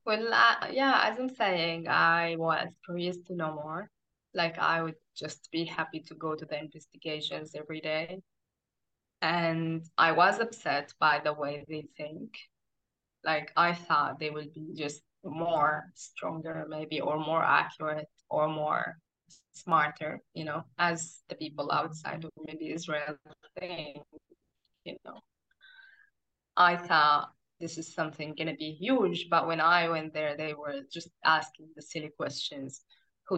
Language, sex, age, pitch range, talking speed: English, female, 20-39, 155-185 Hz, 150 wpm